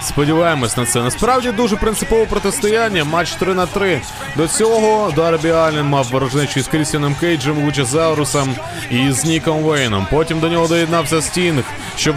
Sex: male